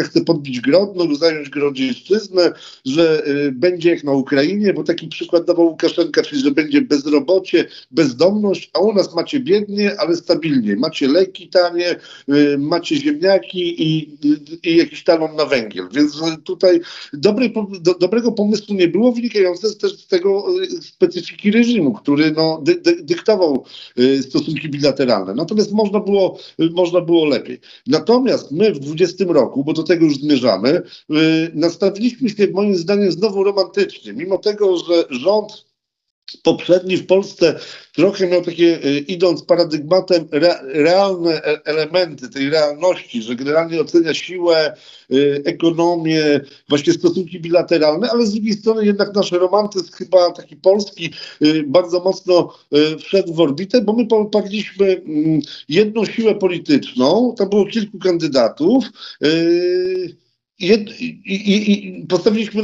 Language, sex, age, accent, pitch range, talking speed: Polish, male, 50-69, native, 160-205 Hz, 120 wpm